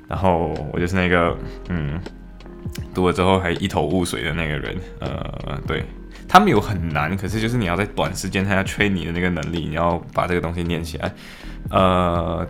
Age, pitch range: 20-39, 85-100 Hz